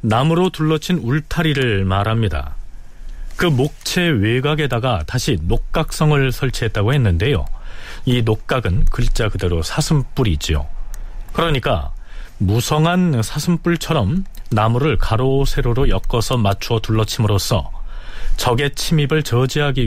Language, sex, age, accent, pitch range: Korean, male, 40-59, native, 100-150 Hz